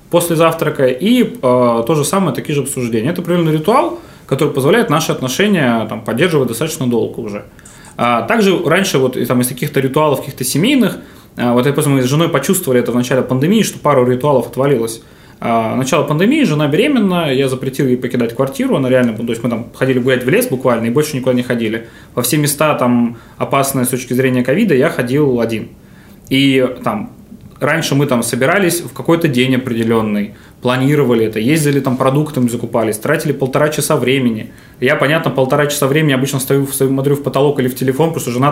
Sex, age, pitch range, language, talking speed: male, 20-39, 125-155 Hz, Russian, 190 wpm